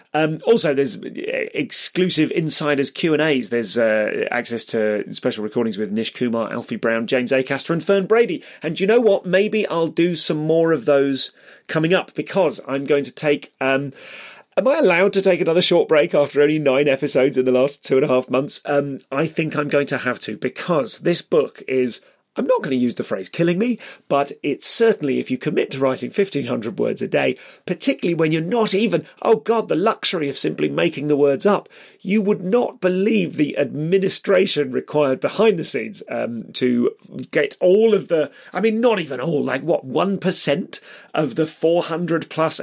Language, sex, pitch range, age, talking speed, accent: English, male, 140-195 Hz, 30-49, 195 wpm, British